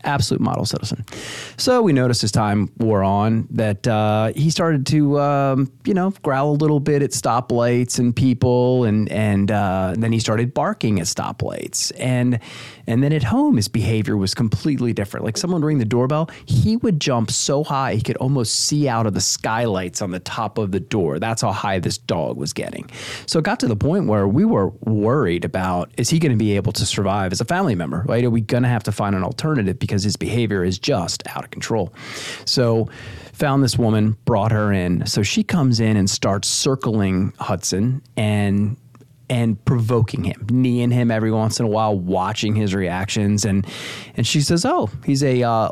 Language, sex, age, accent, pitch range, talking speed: English, male, 30-49, American, 105-130 Hz, 205 wpm